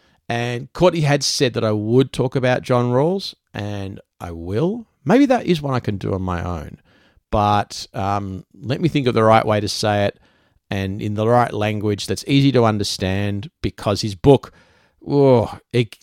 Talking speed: 185 wpm